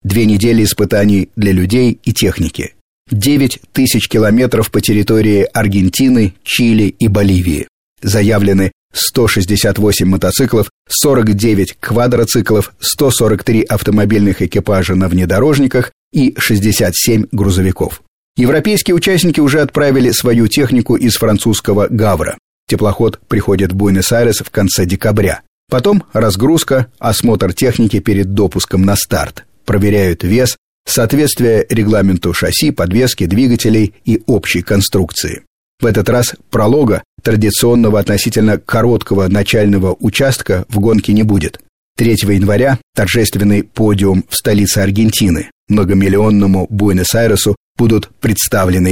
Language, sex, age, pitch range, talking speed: Russian, male, 30-49, 100-120 Hz, 105 wpm